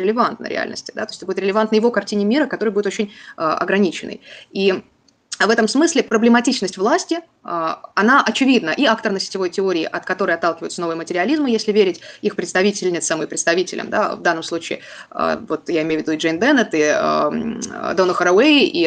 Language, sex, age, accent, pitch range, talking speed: Russian, female, 20-39, native, 185-235 Hz, 190 wpm